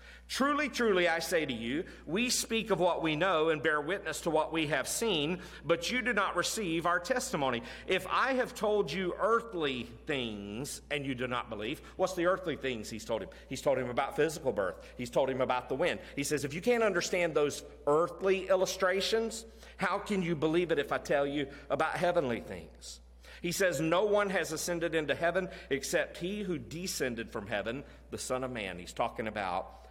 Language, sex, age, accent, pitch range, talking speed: English, male, 40-59, American, 140-190 Hz, 200 wpm